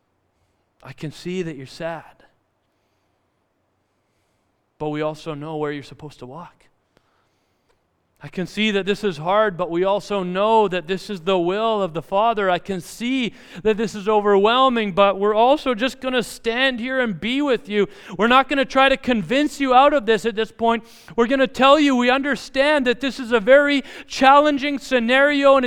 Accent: American